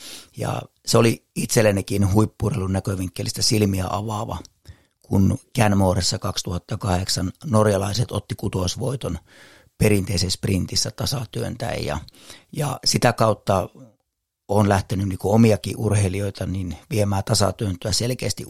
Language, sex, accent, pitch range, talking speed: Finnish, male, native, 95-115 Hz, 100 wpm